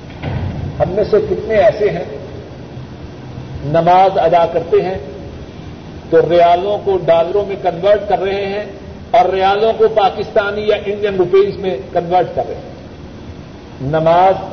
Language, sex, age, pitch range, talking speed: Urdu, male, 50-69, 165-210 Hz, 130 wpm